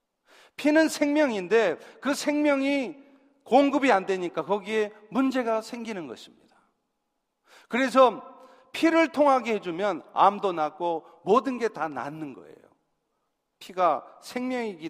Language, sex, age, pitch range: Korean, male, 40-59, 190-265 Hz